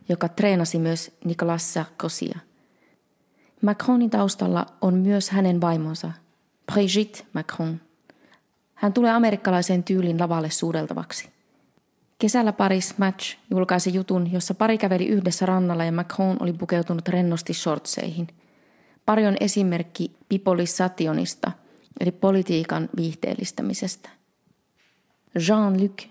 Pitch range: 170-195 Hz